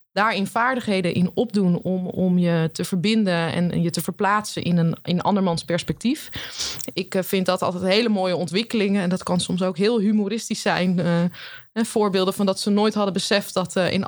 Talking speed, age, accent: 185 wpm, 20-39, Dutch